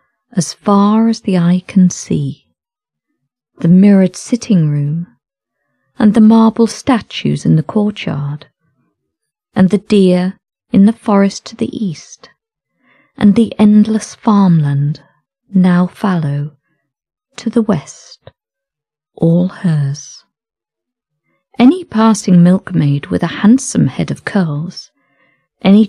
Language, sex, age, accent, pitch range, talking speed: English, female, 40-59, British, 155-230 Hz, 110 wpm